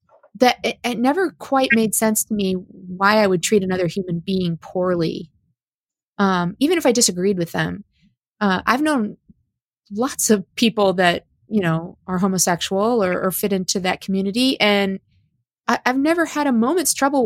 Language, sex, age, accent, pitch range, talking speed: English, female, 20-39, American, 185-240 Hz, 170 wpm